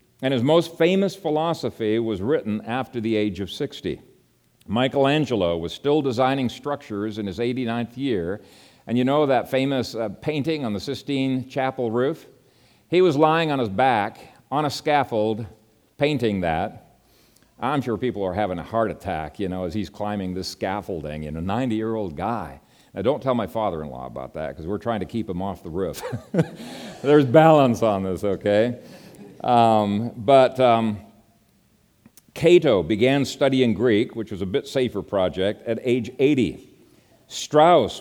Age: 50-69